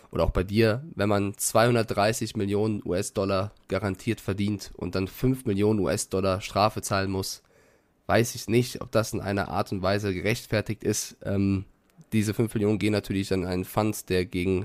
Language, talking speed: German, 170 wpm